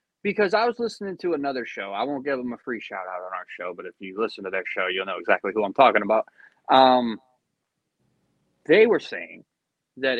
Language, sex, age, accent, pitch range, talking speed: English, male, 20-39, American, 120-190 Hz, 210 wpm